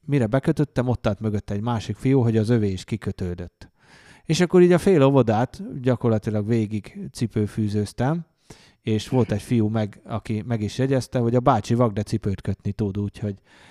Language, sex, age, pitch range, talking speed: Hungarian, male, 30-49, 105-125 Hz, 170 wpm